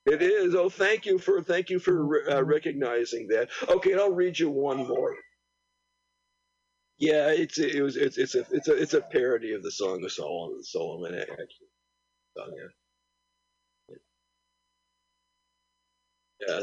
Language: English